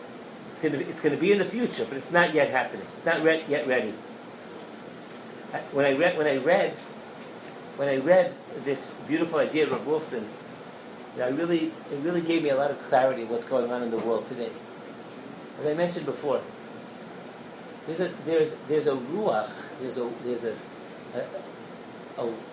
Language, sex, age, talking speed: English, male, 40-59, 190 wpm